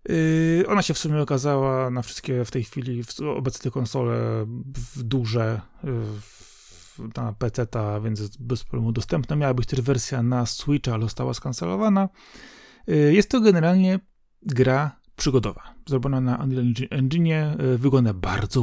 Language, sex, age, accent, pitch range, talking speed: Polish, male, 30-49, native, 120-140 Hz, 140 wpm